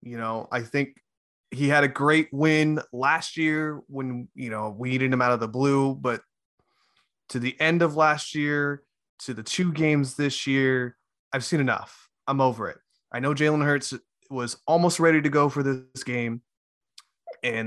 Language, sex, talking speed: English, male, 180 wpm